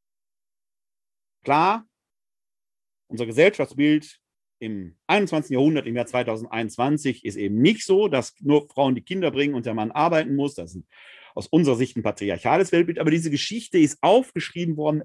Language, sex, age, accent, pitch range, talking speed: German, male, 40-59, German, 115-180 Hz, 155 wpm